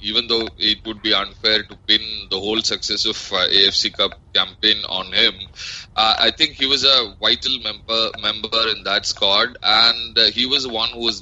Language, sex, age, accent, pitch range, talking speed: English, male, 20-39, Indian, 95-110 Hz, 195 wpm